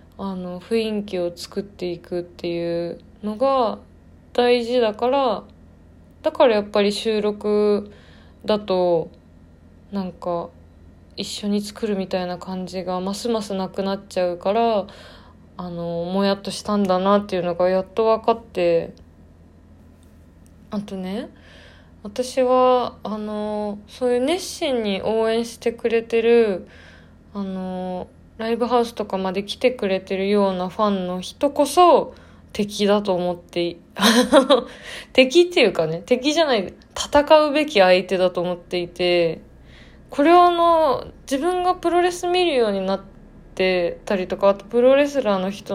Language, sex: Japanese, female